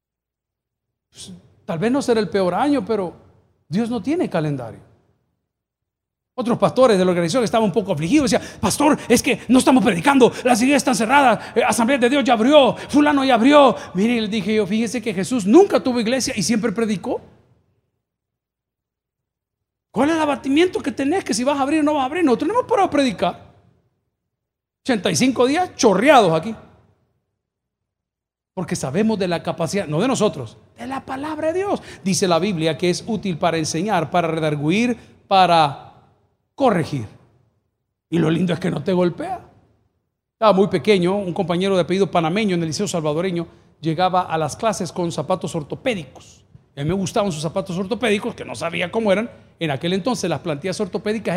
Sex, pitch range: male, 165-245 Hz